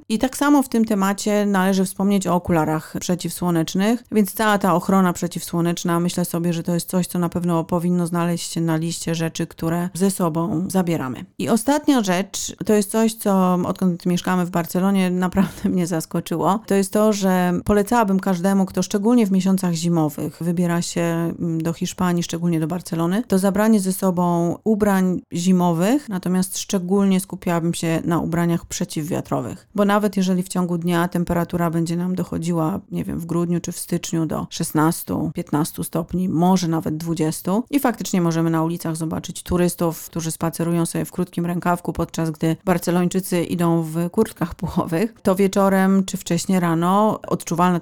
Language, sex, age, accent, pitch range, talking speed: Polish, female, 40-59, native, 170-195 Hz, 160 wpm